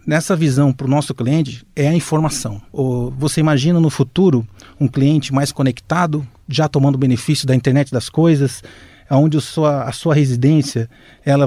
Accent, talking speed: Brazilian, 150 wpm